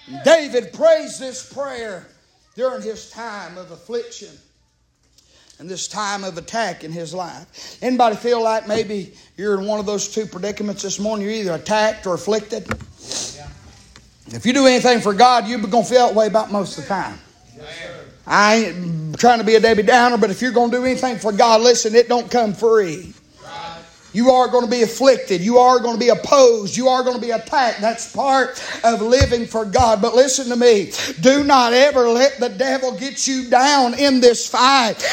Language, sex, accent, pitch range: English, male, American, 220-270 Hz